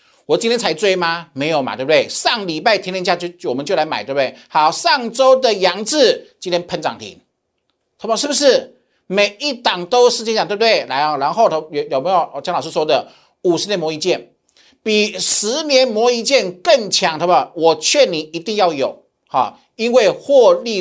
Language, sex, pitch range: Chinese, male, 180-260 Hz